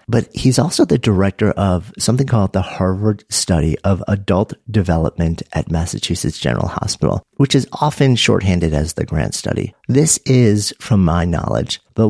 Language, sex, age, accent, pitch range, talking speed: English, male, 50-69, American, 90-120 Hz, 160 wpm